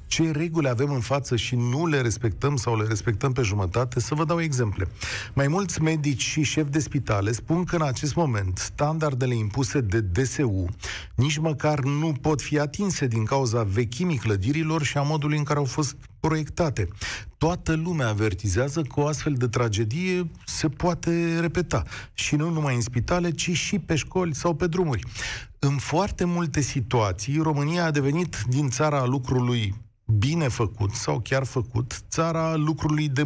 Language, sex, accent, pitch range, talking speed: Romanian, male, native, 115-155 Hz, 170 wpm